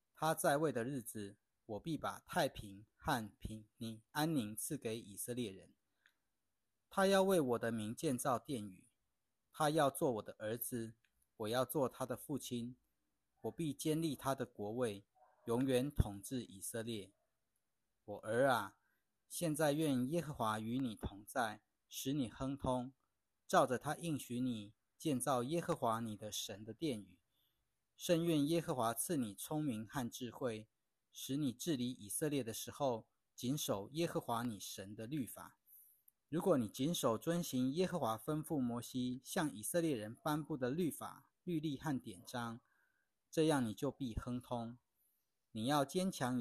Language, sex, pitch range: Chinese, male, 110-150 Hz